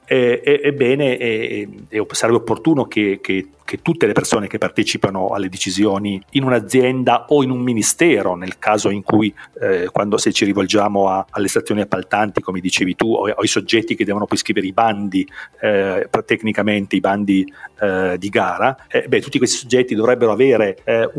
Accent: native